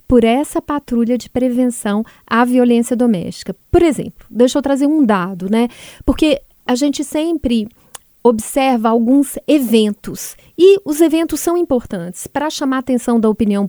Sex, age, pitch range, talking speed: female, 30-49, 220-270 Hz, 150 wpm